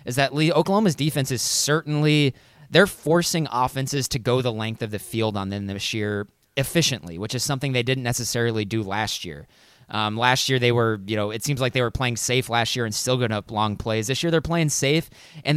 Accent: American